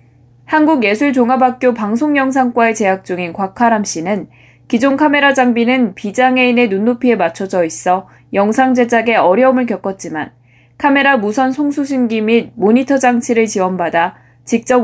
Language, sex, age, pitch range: Korean, female, 20-39, 185-255 Hz